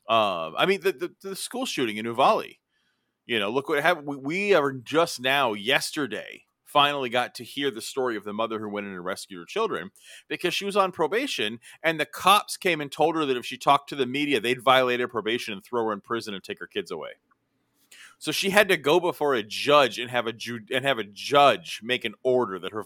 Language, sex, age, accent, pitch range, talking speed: English, male, 30-49, American, 115-175 Hz, 240 wpm